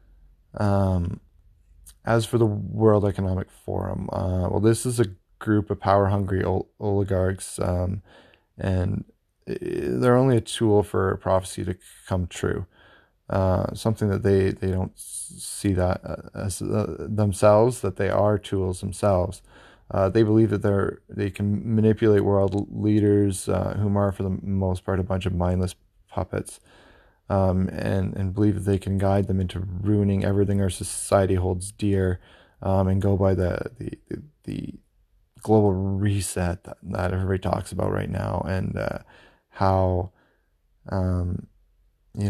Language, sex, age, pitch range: English, male, 20-39, 95-105 Hz